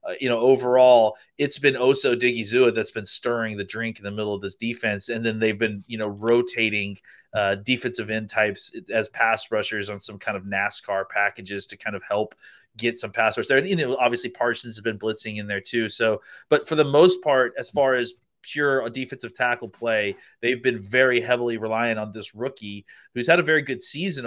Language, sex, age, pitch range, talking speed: English, male, 30-49, 110-125 Hz, 210 wpm